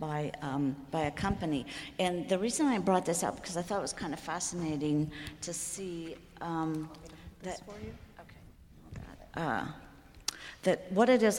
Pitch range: 155-185 Hz